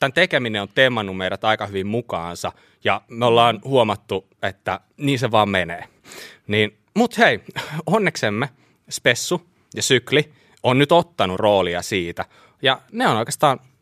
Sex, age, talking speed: male, 20-39, 145 wpm